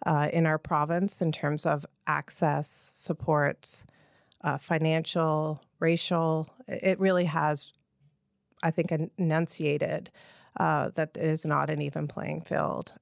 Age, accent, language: 30-49, American, English